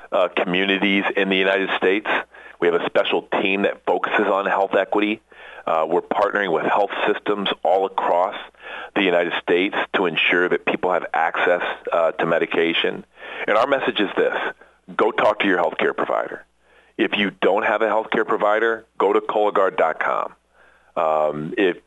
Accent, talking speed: American, 160 wpm